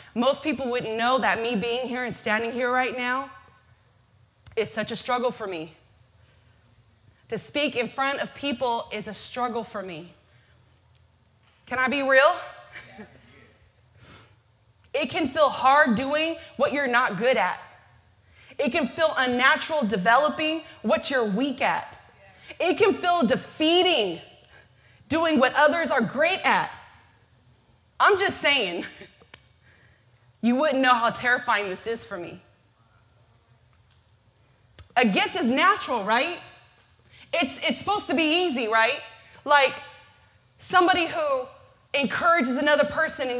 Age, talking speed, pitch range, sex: 20-39, 130 wpm, 200-300 Hz, female